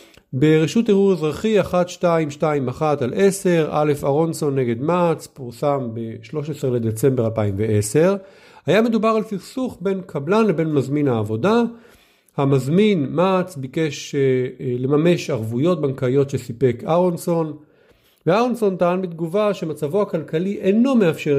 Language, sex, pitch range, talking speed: Hebrew, male, 140-190 Hz, 120 wpm